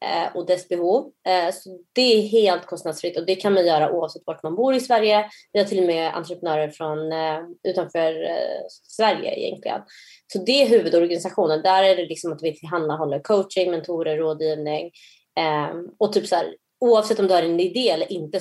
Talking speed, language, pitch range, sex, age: 175 wpm, English, 160-195 Hz, female, 20-39